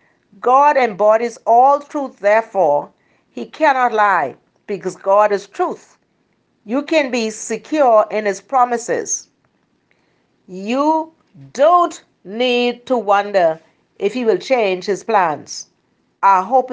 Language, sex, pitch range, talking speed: English, female, 195-270 Hz, 115 wpm